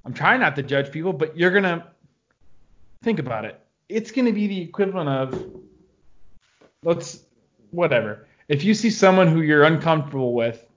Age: 20-39